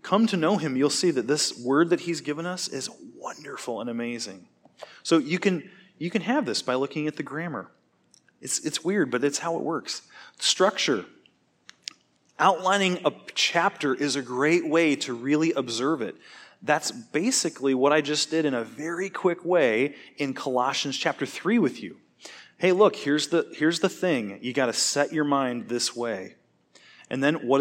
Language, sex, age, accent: English, male, 30-49, American